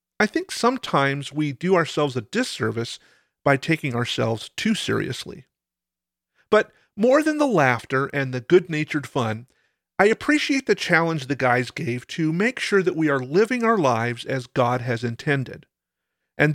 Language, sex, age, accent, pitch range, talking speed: English, male, 40-59, American, 125-175 Hz, 155 wpm